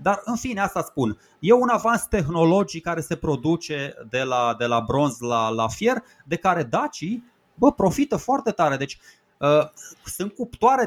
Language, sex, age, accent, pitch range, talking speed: Romanian, male, 30-49, native, 130-185 Hz, 170 wpm